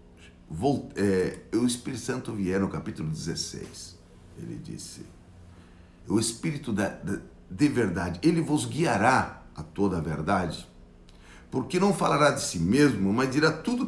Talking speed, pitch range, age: 125 wpm, 80-130 Hz, 60-79